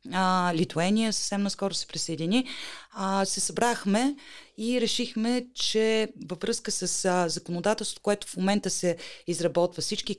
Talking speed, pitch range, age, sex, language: 130 wpm, 170-215 Hz, 30-49, female, Bulgarian